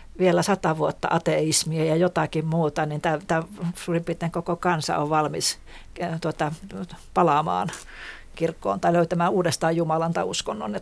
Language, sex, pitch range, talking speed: Finnish, female, 155-180 Hz, 120 wpm